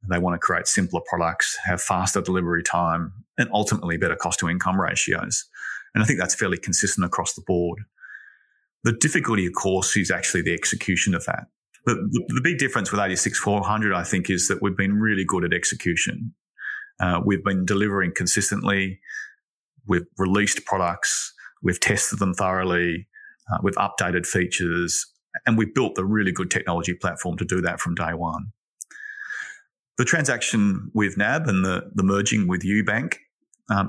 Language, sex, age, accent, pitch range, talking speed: English, male, 30-49, Australian, 90-110 Hz, 160 wpm